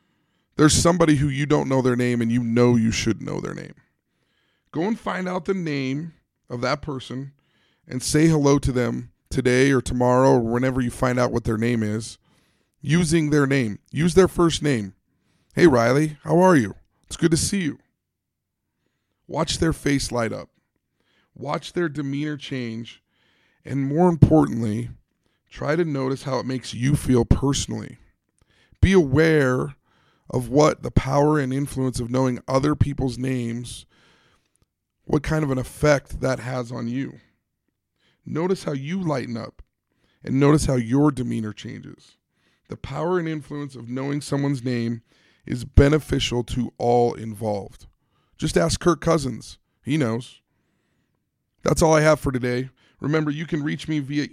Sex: male